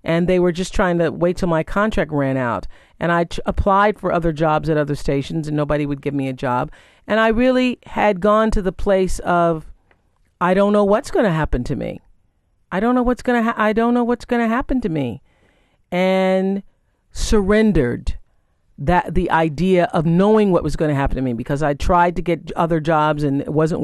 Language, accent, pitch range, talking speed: English, American, 145-195 Hz, 220 wpm